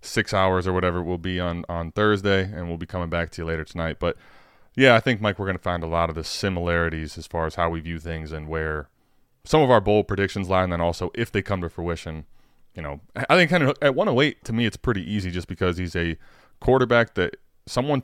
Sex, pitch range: male, 85-105 Hz